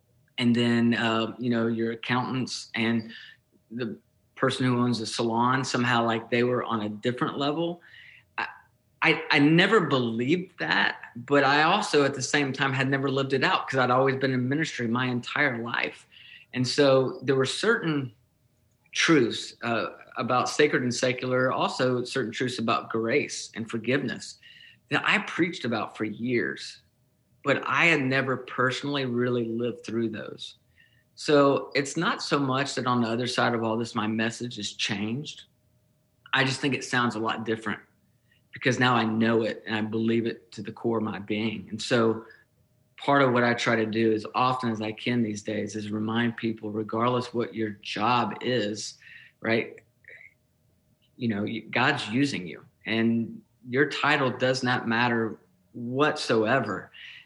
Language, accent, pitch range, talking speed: English, American, 115-135 Hz, 165 wpm